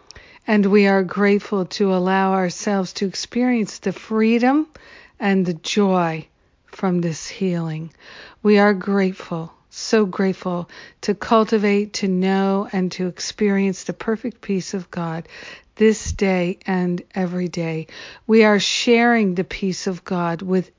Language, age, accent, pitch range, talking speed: English, 50-69, American, 180-205 Hz, 135 wpm